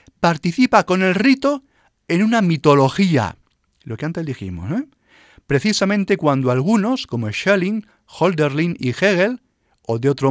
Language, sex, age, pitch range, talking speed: Spanish, male, 40-59, 115-180 Hz, 130 wpm